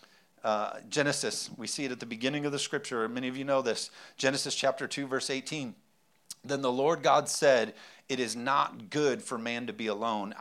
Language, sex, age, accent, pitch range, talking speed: English, male, 40-59, American, 130-150 Hz, 200 wpm